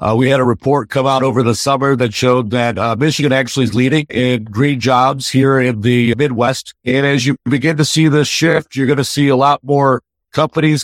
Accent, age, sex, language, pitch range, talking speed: American, 50-69, male, English, 125-145 Hz, 225 wpm